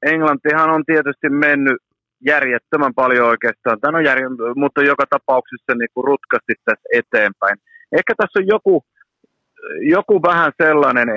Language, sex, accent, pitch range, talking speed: Finnish, male, native, 110-155 Hz, 130 wpm